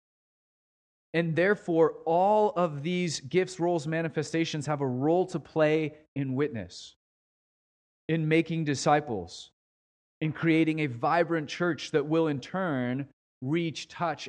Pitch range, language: 140-175 Hz, English